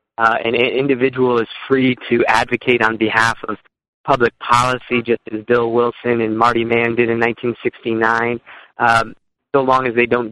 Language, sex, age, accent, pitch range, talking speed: English, male, 20-39, American, 110-120 Hz, 165 wpm